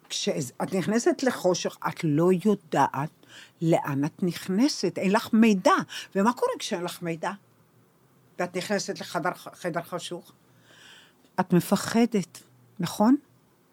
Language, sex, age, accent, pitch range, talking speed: Hebrew, female, 50-69, native, 170-240 Hz, 105 wpm